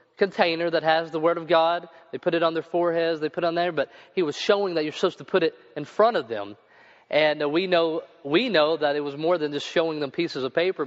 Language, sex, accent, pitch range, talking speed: English, male, American, 145-175 Hz, 260 wpm